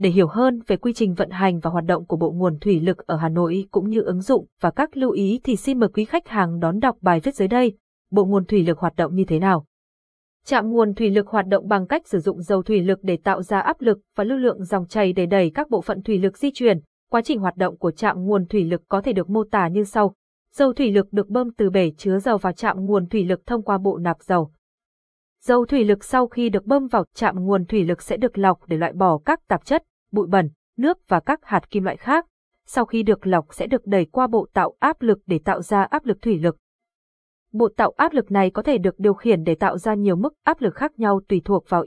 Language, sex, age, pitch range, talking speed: Vietnamese, female, 20-39, 185-235 Hz, 265 wpm